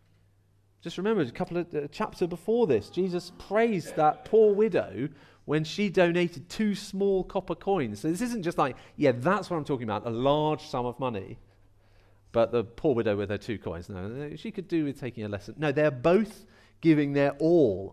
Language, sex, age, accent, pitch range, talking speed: English, male, 40-59, British, 100-155 Hz, 195 wpm